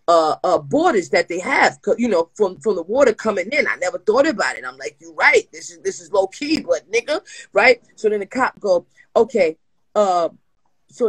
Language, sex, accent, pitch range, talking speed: English, female, American, 190-265 Hz, 215 wpm